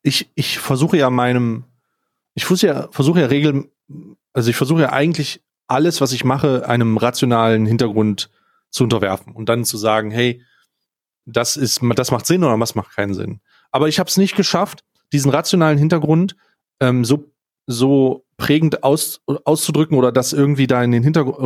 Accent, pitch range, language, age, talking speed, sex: German, 125-165 Hz, German, 30-49, 175 wpm, male